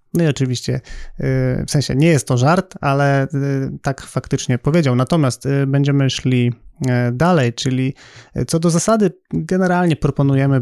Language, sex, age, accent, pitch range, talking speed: Polish, male, 30-49, native, 125-140 Hz, 130 wpm